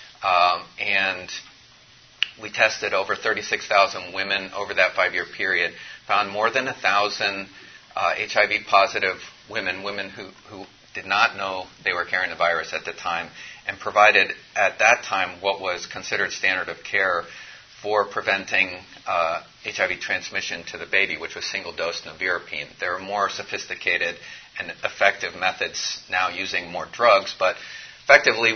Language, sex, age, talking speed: English, male, 40-59, 145 wpm